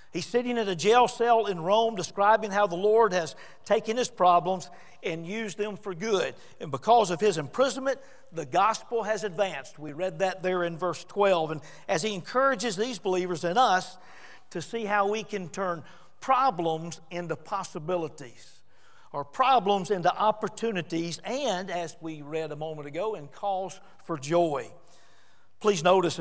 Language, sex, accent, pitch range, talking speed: English, male, American, 170-220 Hz, 165 wpm